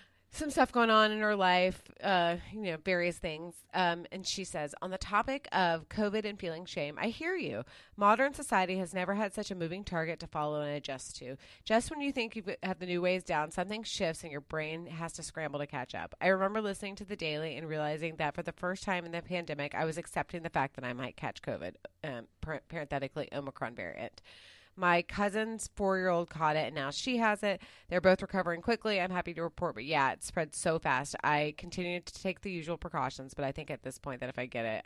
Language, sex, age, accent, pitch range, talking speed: English, female, 30-49, American, 150-190 Hz, 230 wpm